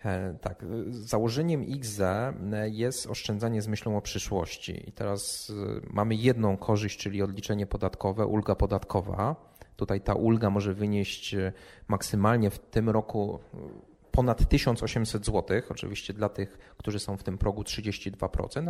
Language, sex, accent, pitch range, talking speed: Polish, male, native, 100-120 Hz, 130 wpm